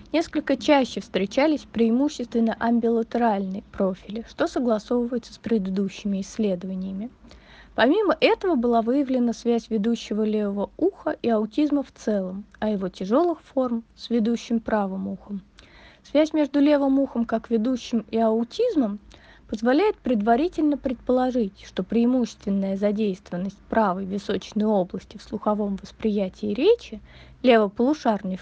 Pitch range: 205-250 Hz